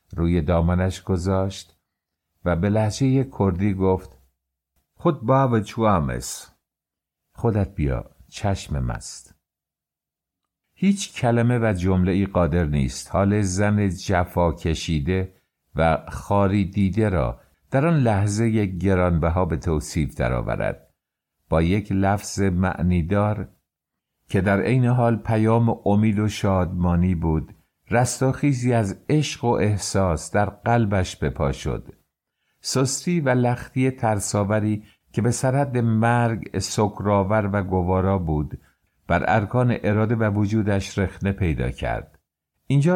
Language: English